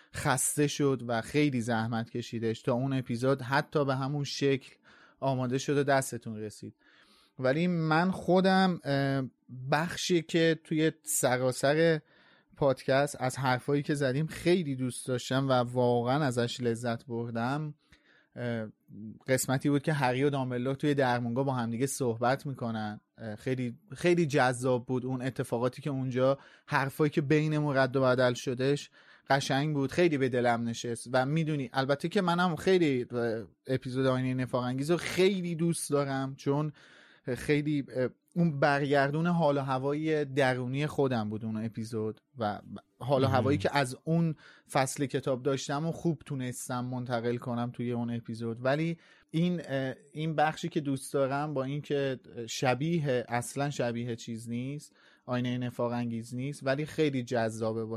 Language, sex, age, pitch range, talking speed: Persian, male, 30-49, 125-150 Hz, 135 wpm